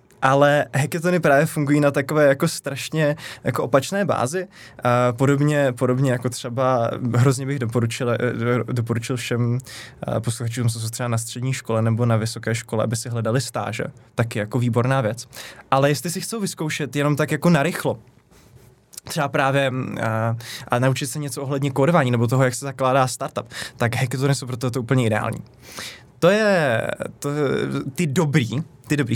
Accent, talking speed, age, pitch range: native, 160 wpm, 20-39, 120-150 Hz